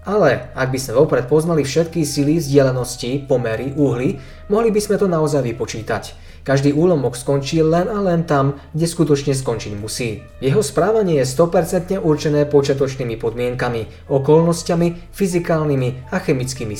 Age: 20-39